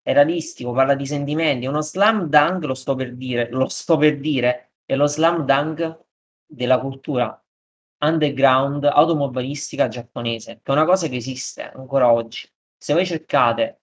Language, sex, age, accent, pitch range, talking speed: Italian, male, 20-39, native, 125-155 Hz, 155 wpm